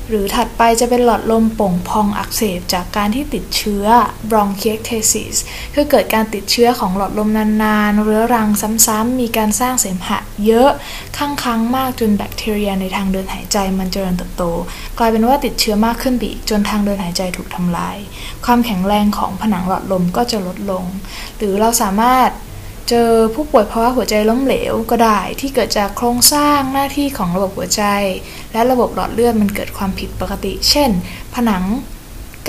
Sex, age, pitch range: female, 10-29, 200-240 Hz